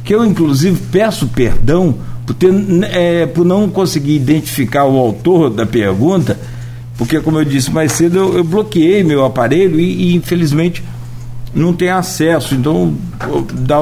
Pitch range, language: 120-165 Hz, Portuguese